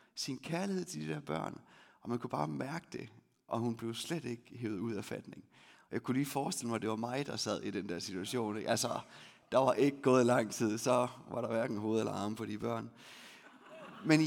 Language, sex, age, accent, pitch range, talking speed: Danish, male, 30-49, native, 115-180 Hz, 225 wpm